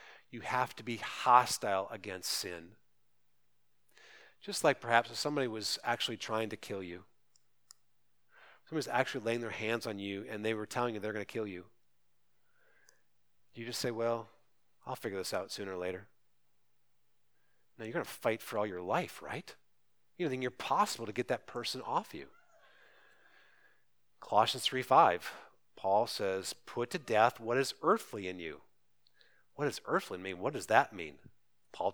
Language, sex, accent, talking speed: English, male, American, 165 wpm